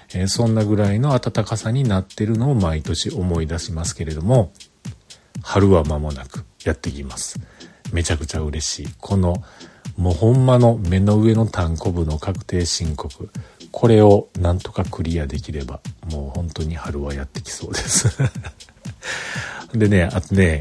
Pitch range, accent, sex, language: 85-125 Hz, native, male, Japanese